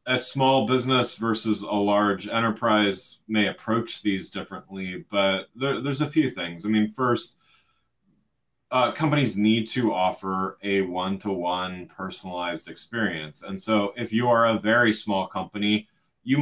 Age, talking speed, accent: 30-49, 145 wpm, American